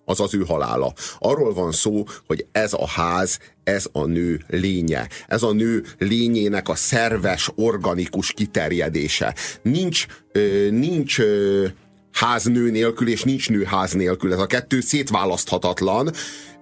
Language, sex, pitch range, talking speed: Hungarian, male, 100-130 Hz, 125 wpm